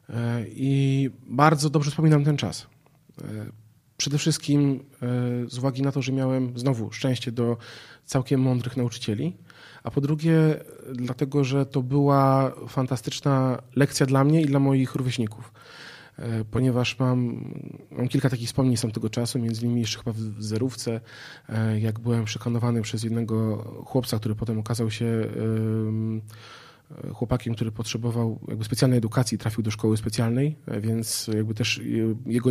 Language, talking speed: Polish, 135 wpm